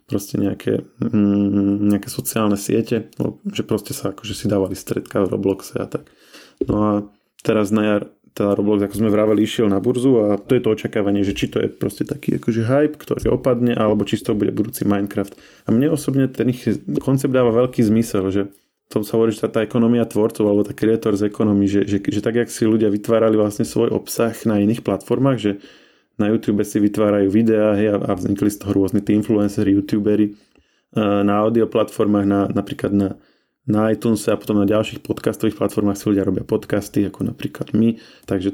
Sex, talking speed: male, 195 wpm